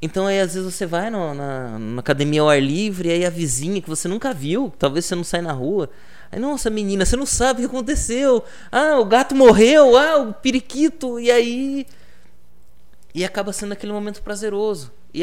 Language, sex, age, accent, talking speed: Portuguese, male, 20-39, Brazilian, 205 wpm